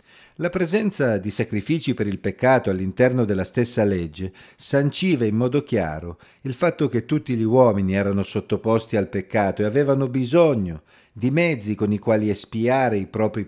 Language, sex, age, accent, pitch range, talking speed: Italian, male, 50-69, native, 105-155 Hz, 160 wpm